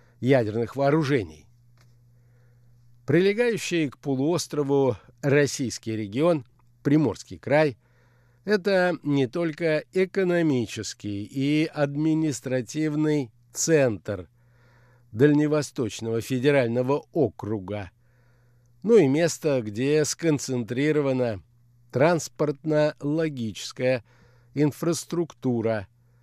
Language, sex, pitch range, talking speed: Russian, male, 120-150 Hz, 60 wpm